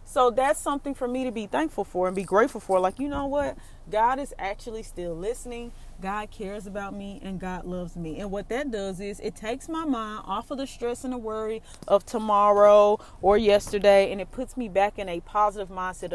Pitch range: 185-235 Hz